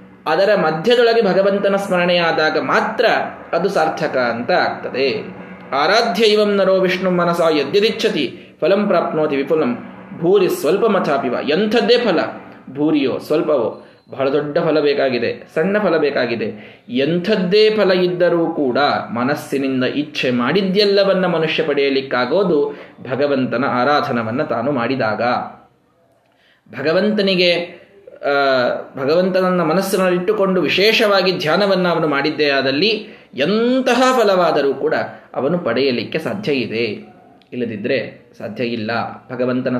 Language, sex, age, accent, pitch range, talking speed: Kannada, male, 20-39, native, 145-200 Hz, 95 wpm